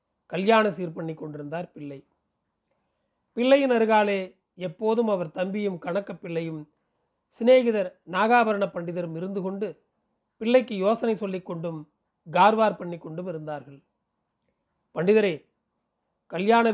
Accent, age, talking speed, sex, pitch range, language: native, 40-59, 85 wpm, male, 180-220 Hz, Tamil